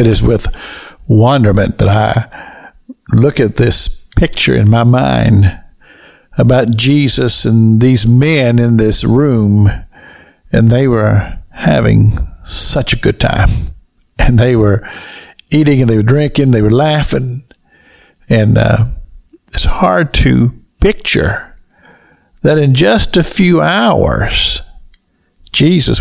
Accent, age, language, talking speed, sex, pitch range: American, 60-79, English, 120 wpm, male, 80-130 Hz